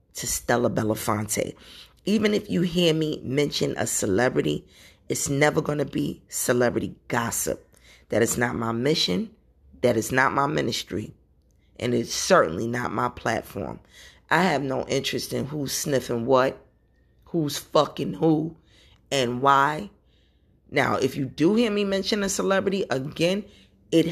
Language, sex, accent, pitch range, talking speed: English, female, American, 130-190 Hz, 145 wpm